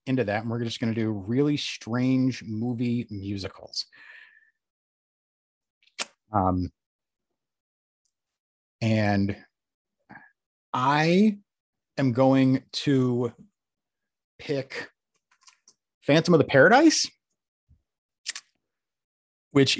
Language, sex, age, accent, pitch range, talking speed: English, male, 30-49, American, 105-130 Hz, 75 wpm